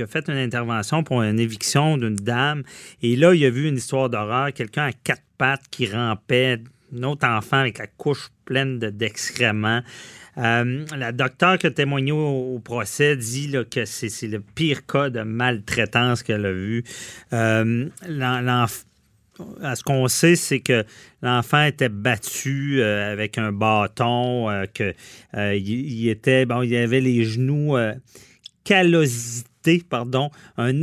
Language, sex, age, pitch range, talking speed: French, male, 40-59, 120-160 Hz, 160 wpm